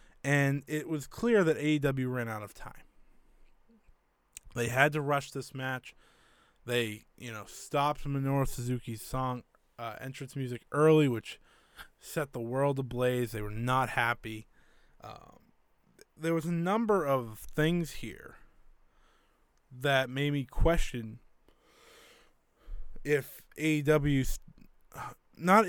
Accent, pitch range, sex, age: American, 115-140 Hz, male, 20-39